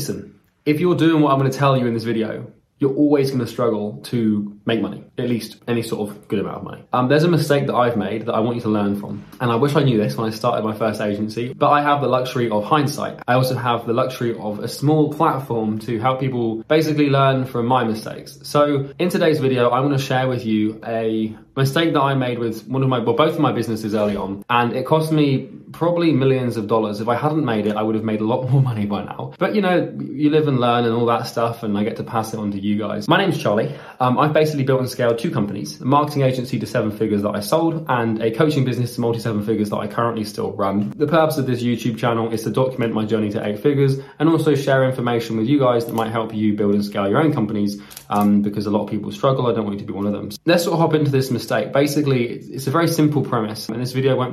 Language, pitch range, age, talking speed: English, 110-140 Hz, 20-39, 275 wpm